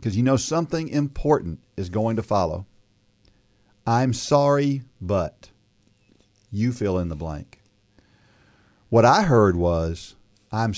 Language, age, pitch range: English, 50-69, 100-125 Hz